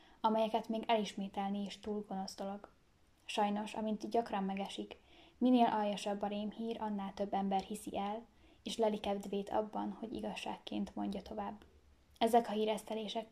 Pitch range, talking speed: 200-220 Hz, 130 wpm